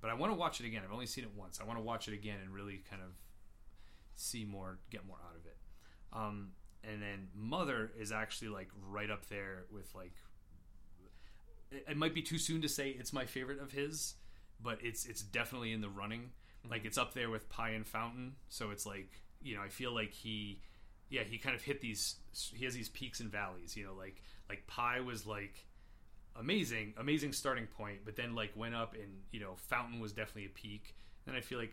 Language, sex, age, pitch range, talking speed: English, male, 30-49, 100-120 Hz, 220 wpm